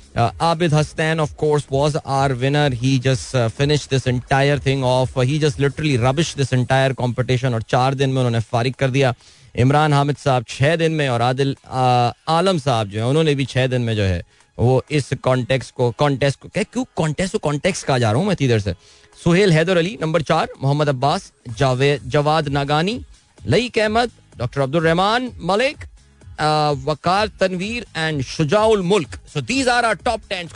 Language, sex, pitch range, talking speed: Hindi, male, 125-165 Hz, 110 wpm